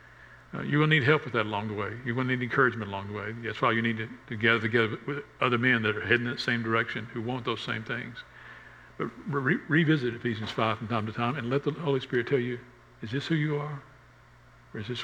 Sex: male